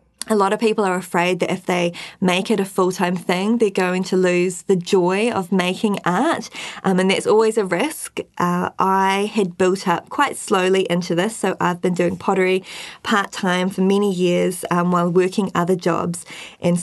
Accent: Australian